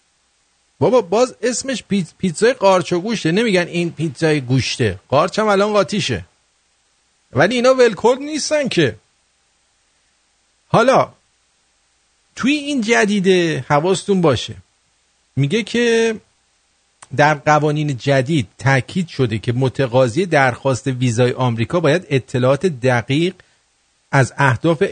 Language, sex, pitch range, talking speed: English, male, 125-175 Hz, 100 wpm